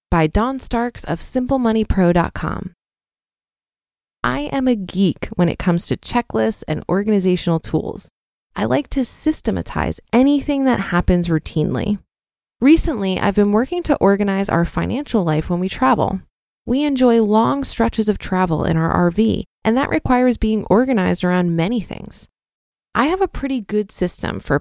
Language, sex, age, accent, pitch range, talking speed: English, female, 20-39, American, 175-245 Hz, 150 wpm